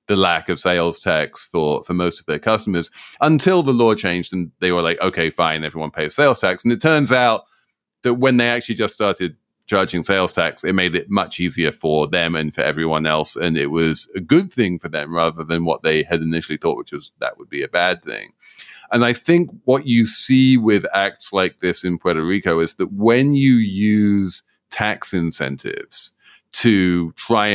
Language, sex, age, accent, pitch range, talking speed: English, male, 30-49, British, 90-125 Hz, 205 wpm